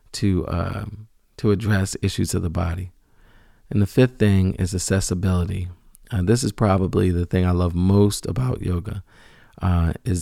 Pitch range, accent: 90-105 Hz, American